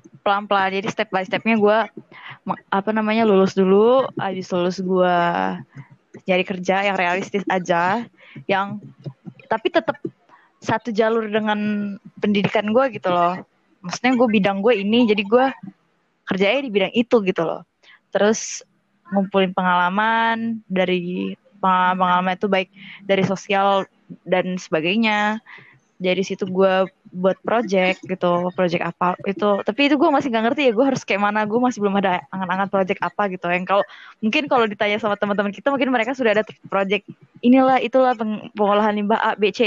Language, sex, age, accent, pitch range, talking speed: Indonesian, female, 20-39, native, 185-225 Hz, 150 wpm